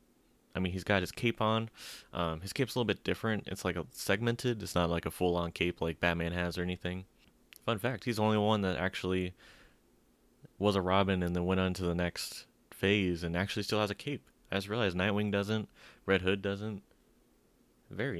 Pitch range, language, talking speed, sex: 90-110 Hz, English, 210 wpm, male